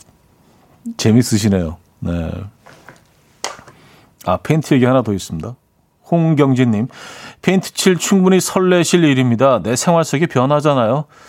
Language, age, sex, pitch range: Korean, 40-59, male, 115-165 Hz